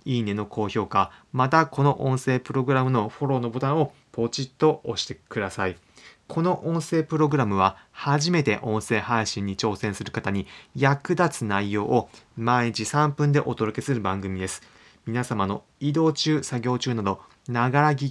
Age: 30-49